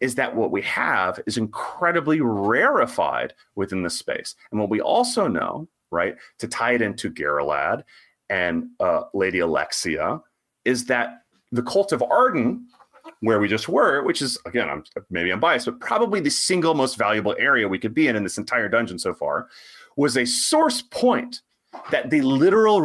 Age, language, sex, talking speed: 30-49, English, male, 175 wpm